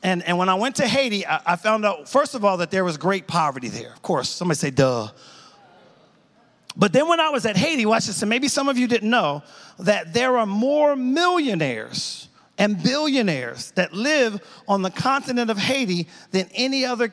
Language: English